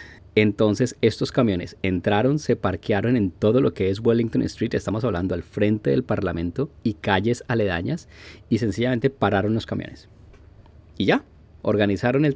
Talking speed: 150 wpm